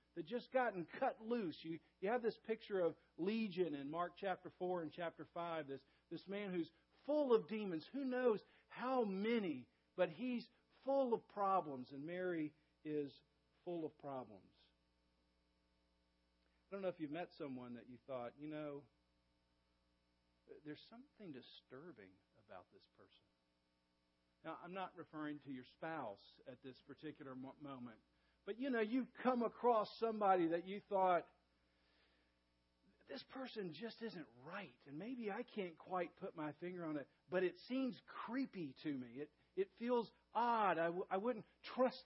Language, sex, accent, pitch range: English, male, American, 130-200 Hz